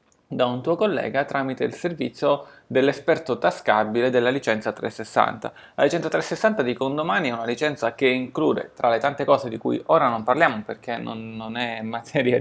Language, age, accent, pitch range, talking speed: Italian, 20-39, native, 115-140 Hz, 175 wpm